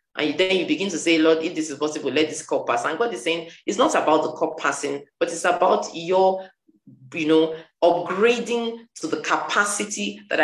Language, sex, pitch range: English, female, 140-180 Hz